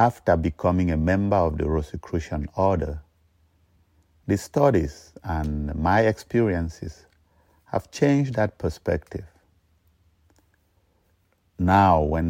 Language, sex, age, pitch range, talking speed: English, male, 50-69, 80-95 Hz, 95 wpm